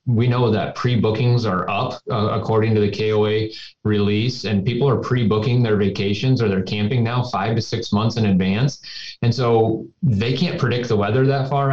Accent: American